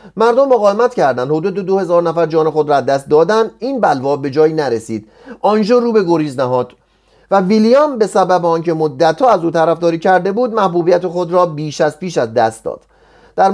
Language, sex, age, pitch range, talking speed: Persian, male, 30-49, 150-210 Hz, 185 wpm